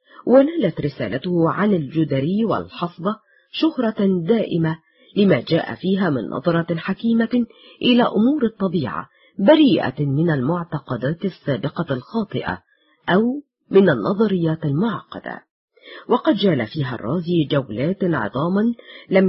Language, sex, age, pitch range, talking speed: Arabic, female, 40-59, 150-225 Hz, 100 wpm